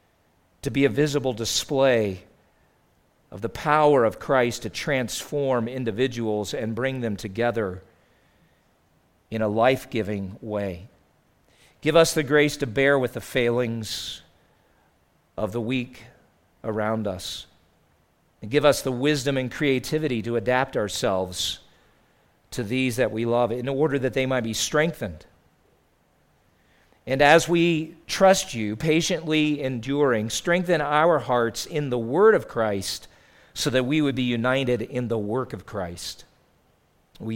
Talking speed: 135 wpm